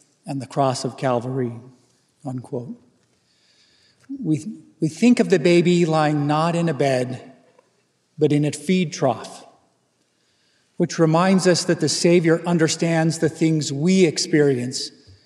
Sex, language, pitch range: male, English, 140-170 Hz